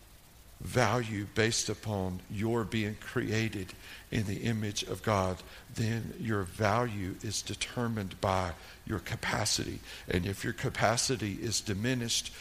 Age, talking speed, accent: 60-79, 120 wpm, American